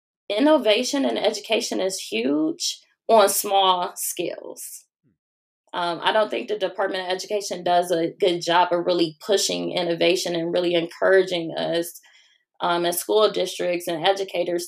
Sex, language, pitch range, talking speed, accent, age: female, English, 180-250 Hz, 140 wpm, American, 20-39